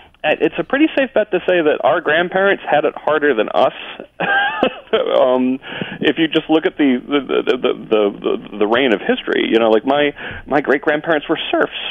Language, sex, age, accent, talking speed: English, male, 30-49, American, 200 wpm